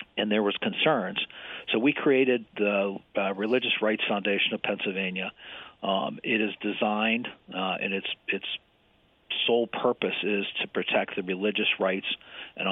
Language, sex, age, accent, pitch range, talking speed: English, male, 50-69, American, 95-110 Hz, 145 wpm